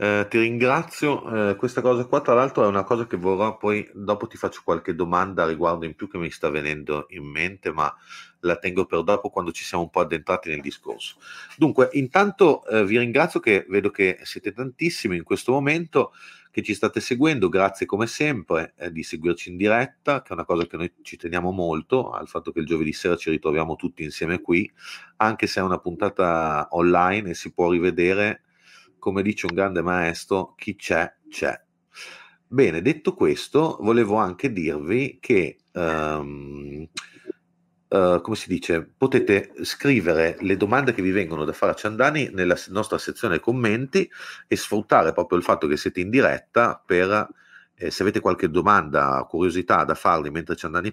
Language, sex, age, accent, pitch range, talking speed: Italian, male, 30-49, native, 85-120 Hz, 180 wpm